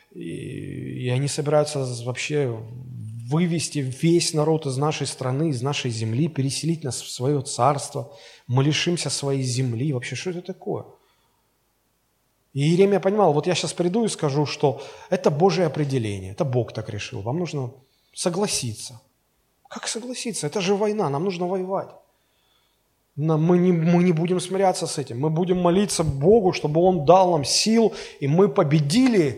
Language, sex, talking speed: Russian, male, 150 wpm